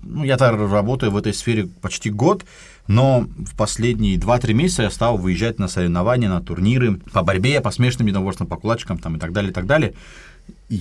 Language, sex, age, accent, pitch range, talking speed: Russian, male, 30-49, native, 100-130 Hz, 195 wpm